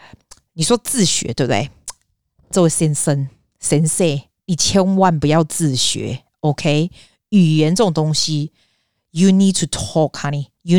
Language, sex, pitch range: Chinese, female, 155-220 Hz